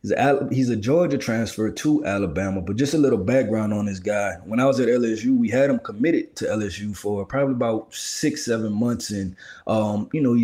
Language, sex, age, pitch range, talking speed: English, male, 20-39, 110-130 Hz, 200 wpm